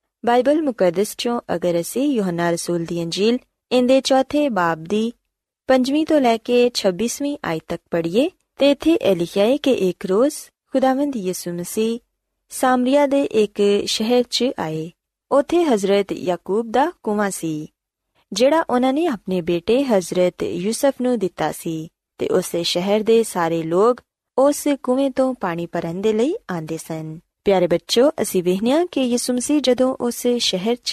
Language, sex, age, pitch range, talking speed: Punjabi, female, 20-39, 180-270 Hz, 105 wpm